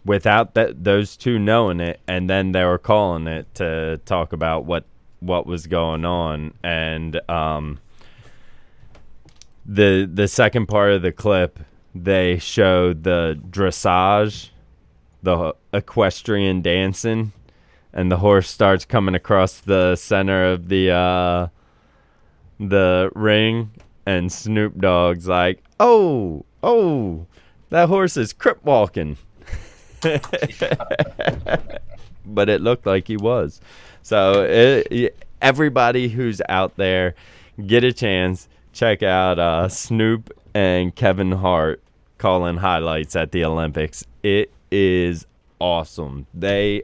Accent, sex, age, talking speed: American, male, 20-39, 115 wpm